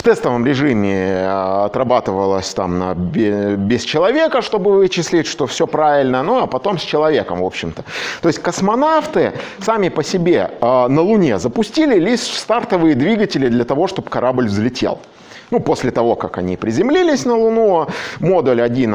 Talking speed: 150 wpm